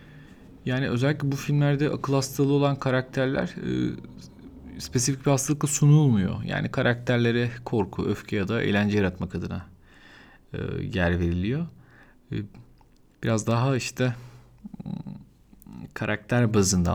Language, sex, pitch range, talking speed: Turkish, male, 105-135 Hz, 110 wpm